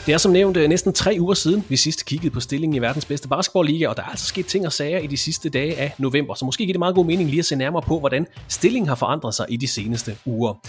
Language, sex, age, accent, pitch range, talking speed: English, male, 30-49, Danish, 125-165 Hz, 290 wpm